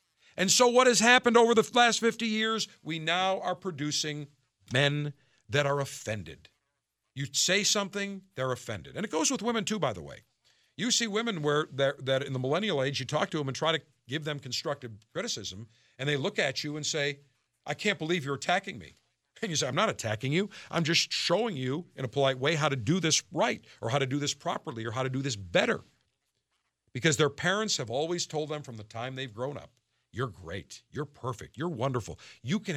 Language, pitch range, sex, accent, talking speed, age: English, 130-185 Hz, male, American, 215 wpm, 50-69